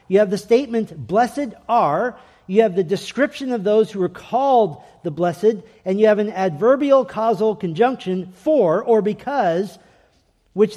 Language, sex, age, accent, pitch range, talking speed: English, male, 40-59, American, 155-215 Hz, 155 wpm